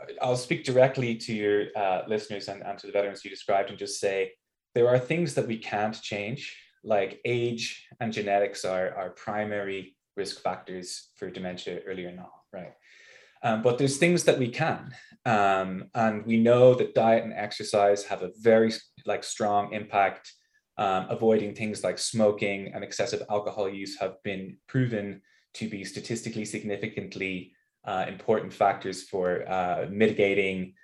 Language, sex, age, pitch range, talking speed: English, male, 20-39, 100-120 Hz, 160 wpm